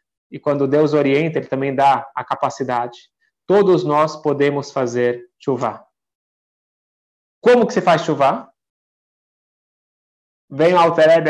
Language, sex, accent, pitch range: Portuguese, male, Brazilian, 135-165 Hz